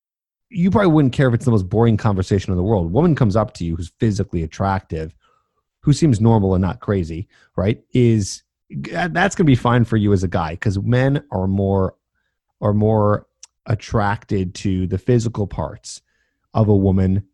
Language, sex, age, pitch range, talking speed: English, male, 30-49, 90-115 Hz, 185 wpm